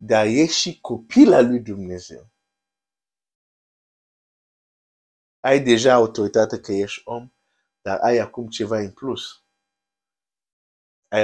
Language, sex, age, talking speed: Romanian, male, 50-69, 95 wpm